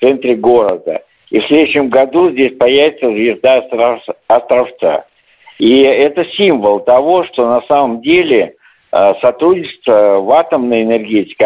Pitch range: 125-160 Hz